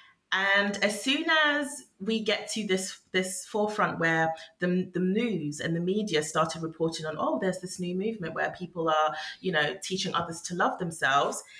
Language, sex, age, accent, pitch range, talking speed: English, female, 30-49, British, 155-195 Hz, 180 wpm